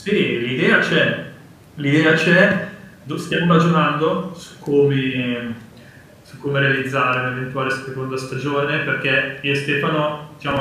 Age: 20-39